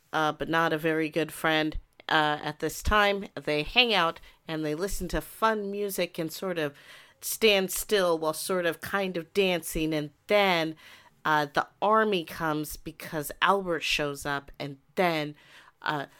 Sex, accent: female, American